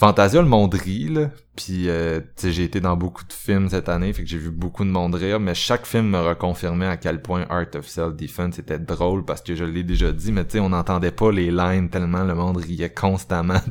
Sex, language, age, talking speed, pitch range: male, French, 20-39, 230 wpm, 85-100 Hz